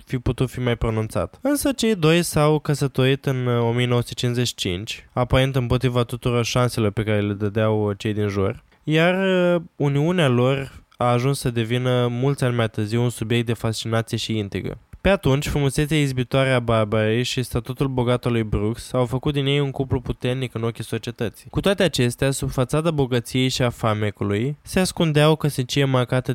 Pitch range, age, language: 115-140 Hz, 20-39, Romanian